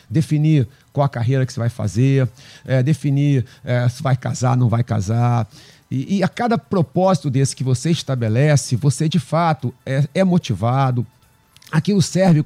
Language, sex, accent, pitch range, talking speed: Portuguese, male, Brazilian, 125-170 Hz, 165 wpm